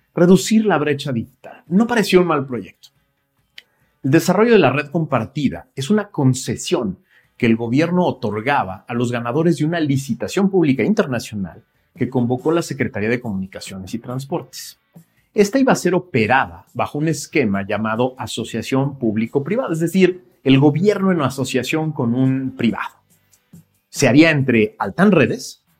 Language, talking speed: Spanish, 145 wpm